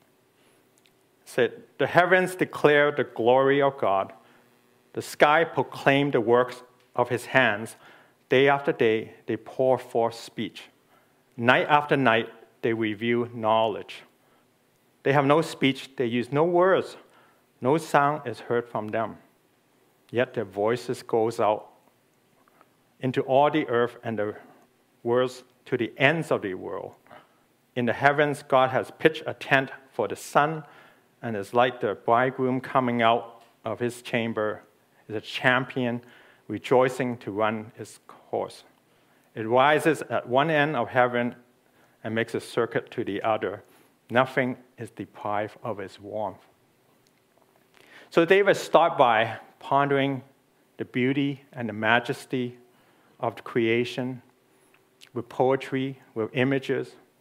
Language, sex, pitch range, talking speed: English, male, 115-135 Hz, 135 wpm